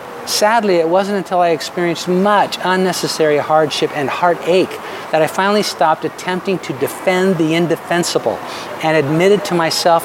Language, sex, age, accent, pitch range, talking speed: English, male, 50-69, American, 150-185 Hz, 145 wpm